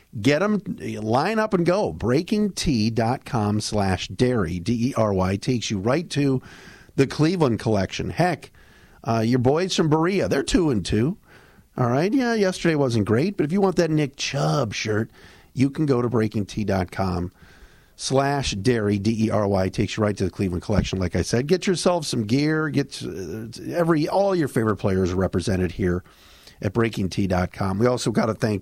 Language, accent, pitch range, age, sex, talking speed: English, American, 100-145 Hz, 50-69, male, 180 wpm